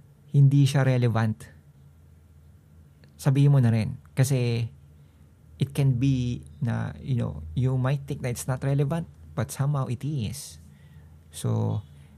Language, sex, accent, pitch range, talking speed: Filipino, male, native, 115-140 Hz, 130 wpm